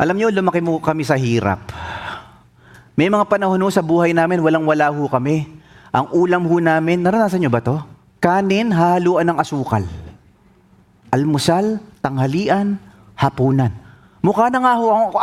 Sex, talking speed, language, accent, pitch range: male, 140 wpm, English, Filipino, 120-175 Hz